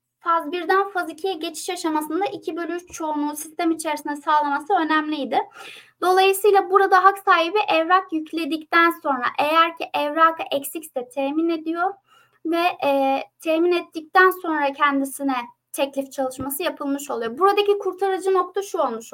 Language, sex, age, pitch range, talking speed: Turkish, female, 20-39, 290-370 Hz, 130 wpm